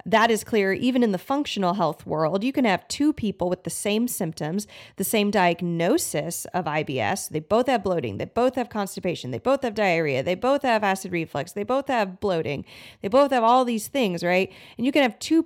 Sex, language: female, English